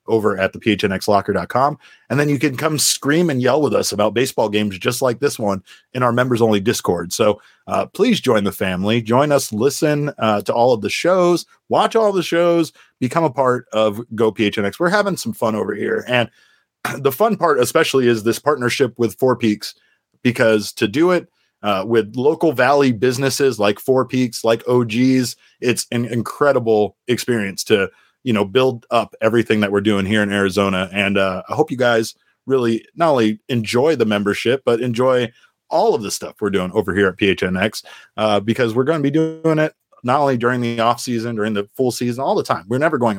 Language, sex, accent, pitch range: English, male, American, 110-135 Hz